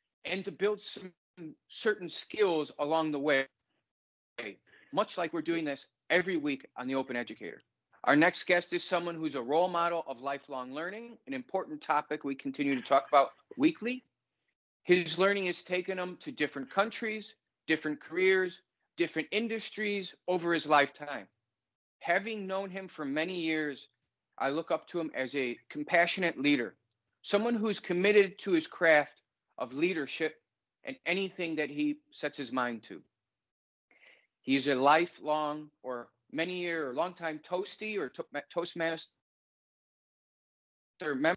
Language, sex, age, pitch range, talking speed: English, male, 40-59, 150-190 Hz, 145 wpm